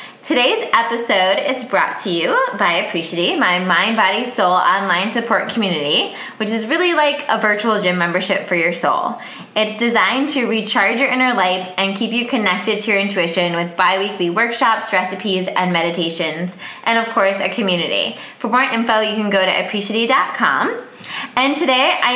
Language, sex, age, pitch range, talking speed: English, female, 20-39, 200-260 Hz, 170 wpm